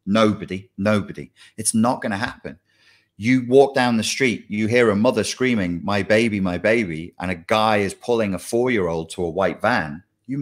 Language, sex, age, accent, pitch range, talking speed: English, male, 30-49, British, 100-130 Hz, 185 wpm